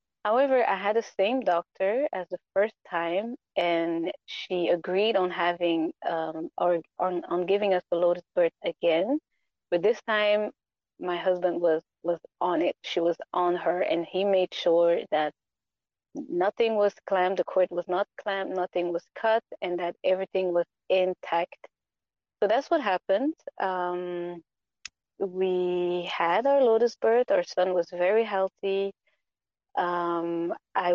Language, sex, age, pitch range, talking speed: English, female, 20-39, 175-215 Hz, 145 wpm